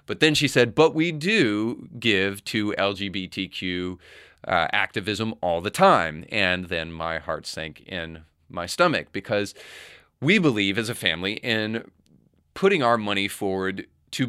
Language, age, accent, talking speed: English, 30-49, American, 145 wpm